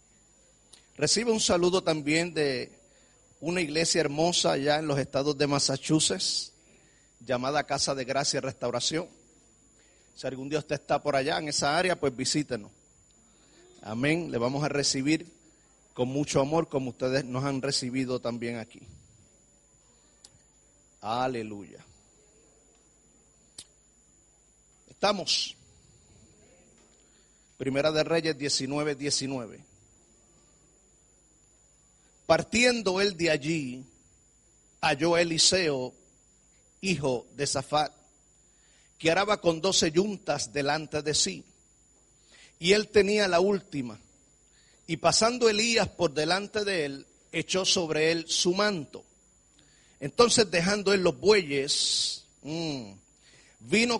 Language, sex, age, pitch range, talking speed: Spanish, male, 40-59, 135-180 Hz, 105 wpm